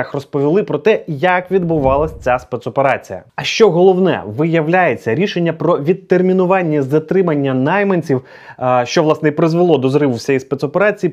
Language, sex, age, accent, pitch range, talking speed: Ukrainian, male, 20-39, native, 150-205 Hz, 130 wpm